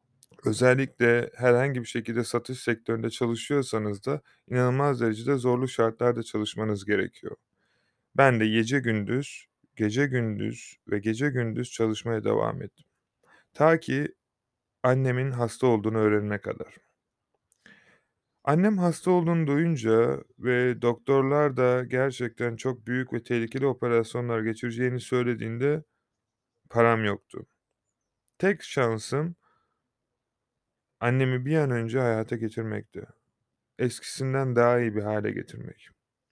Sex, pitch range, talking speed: male, 115-130 Hz, 105 wpm